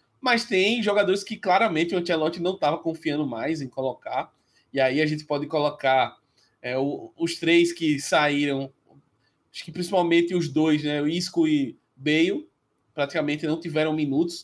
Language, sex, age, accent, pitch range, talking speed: Portuguese, male, 20-39, Brazilian, 145-175 Hz, 160 wpm